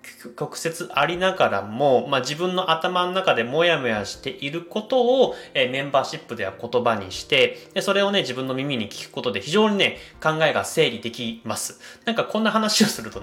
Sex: male